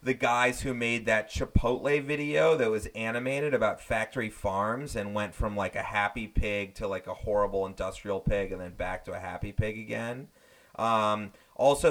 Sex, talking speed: male, 180 wpm